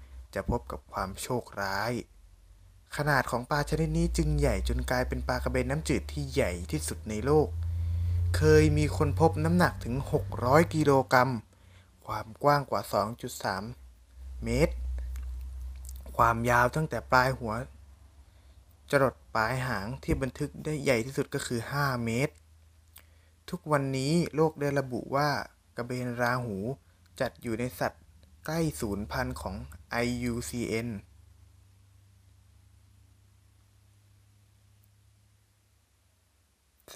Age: 20-39